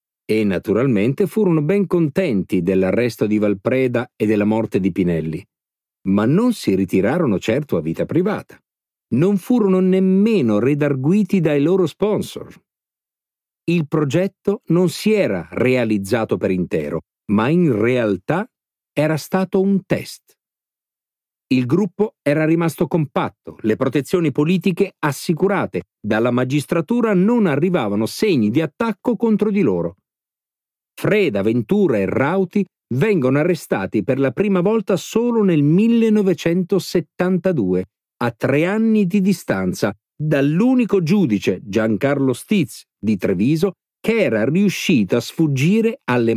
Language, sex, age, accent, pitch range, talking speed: Italian, male, 50-69, native, 120-195 Hz, 120 wpm